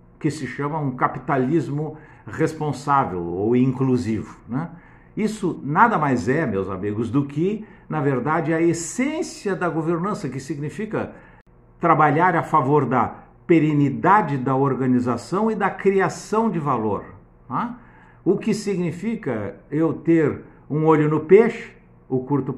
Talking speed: 130 wpm